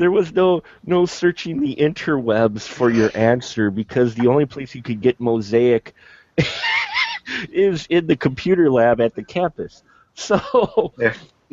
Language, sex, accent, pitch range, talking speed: English, male, American, 100-125 Hz, 145 wpm